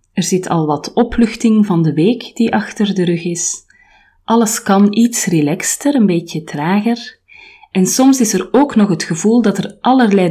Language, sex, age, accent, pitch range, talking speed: Dutch, female, 30-49, Belgian, 170-220 Hz, 180 wpm